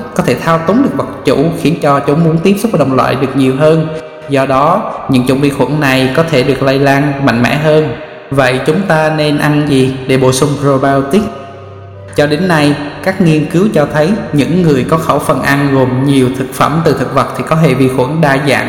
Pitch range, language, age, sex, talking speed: 135-160 Hz, Vietnamese, 20-39, male, 230 wpm